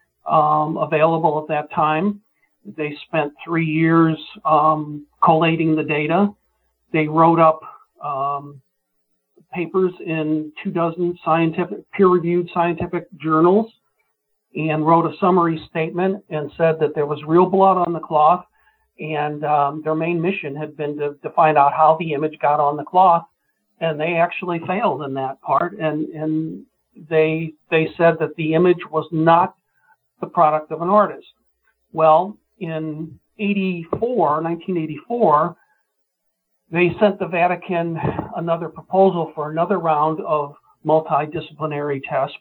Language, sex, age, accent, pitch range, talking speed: English, male, 50-69, American, 150-175 Hz, 135 wpm